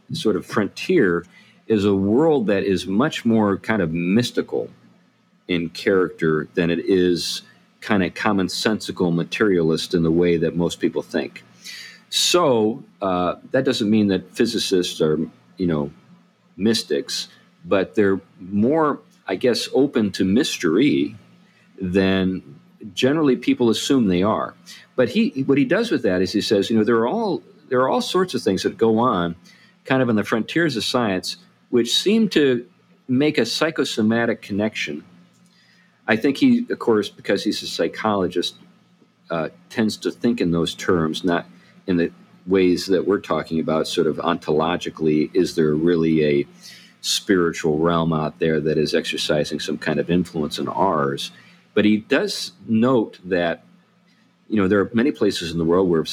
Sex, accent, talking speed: male, American, 160 wpm